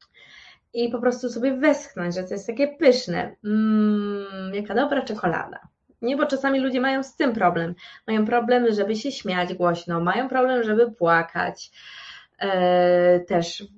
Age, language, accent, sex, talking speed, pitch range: 20-39, Polish, native, female, 140 wpm, 195-255 Hz